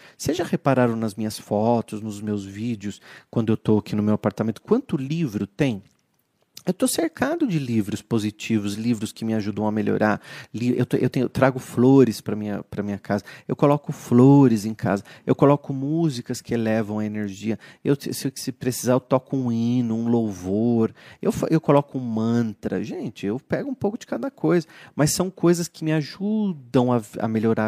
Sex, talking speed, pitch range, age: male, 175 wpm, 110-170 Hz, 30-49